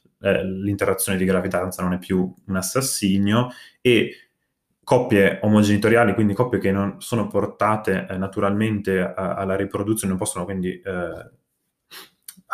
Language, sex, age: Italian, male, 20-39